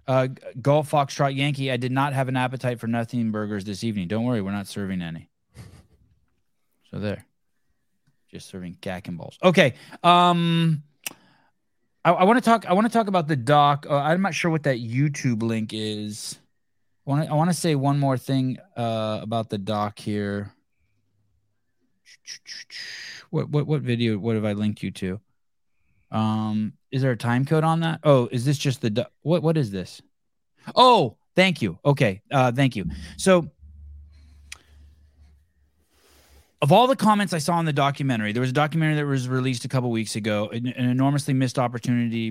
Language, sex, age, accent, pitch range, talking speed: English, male, 20-39, American, 105-140 Hz, 175 wpm